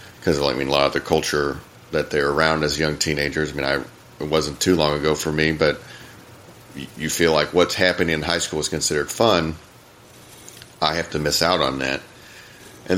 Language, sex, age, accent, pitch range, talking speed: English, male, 40-59, American, 75-95 Hz, 210 wpm